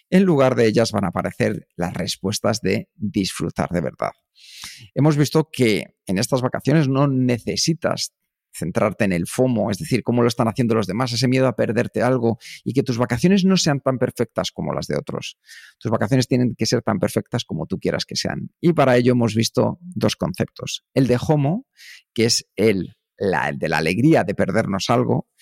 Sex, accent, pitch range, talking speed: male, Spanish, 110-135 Hz, 190 wpm